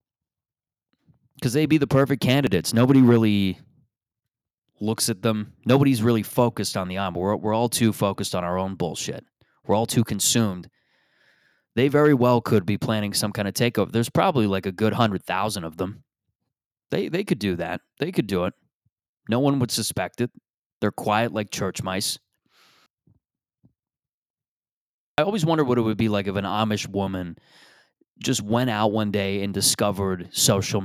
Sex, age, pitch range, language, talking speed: male, 20-39, 95-115 Hz, English, 165 wpm